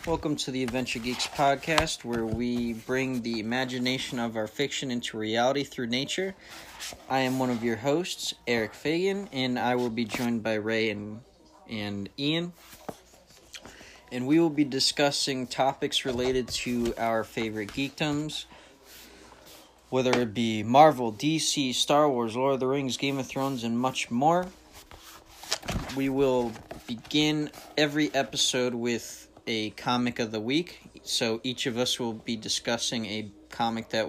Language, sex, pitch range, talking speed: English, male, 110-135 Hz, 150 wpm